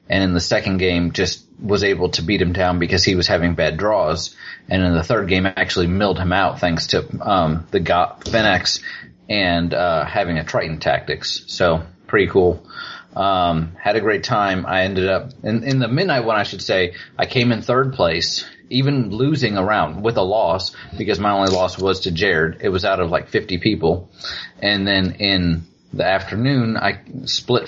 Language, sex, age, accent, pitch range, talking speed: English, male, 30-49, American, 90-120 Hz, 195 wpm